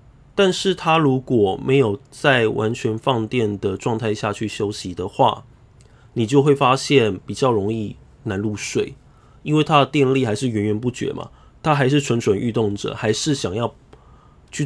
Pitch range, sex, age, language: 105-135 Hz, male, 20-39, Chinese